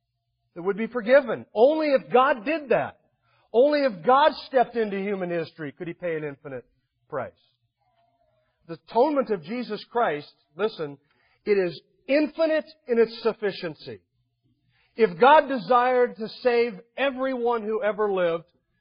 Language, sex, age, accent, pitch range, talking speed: English, male, 50-69, American, 170-250 Hz, 135 wpm